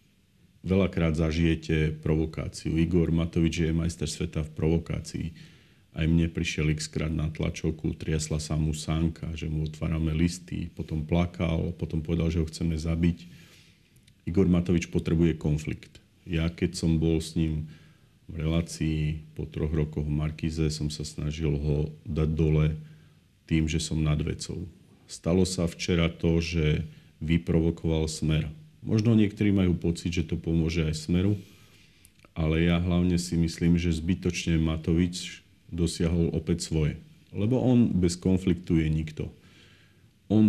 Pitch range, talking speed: 80-90 Hz, 140 wpm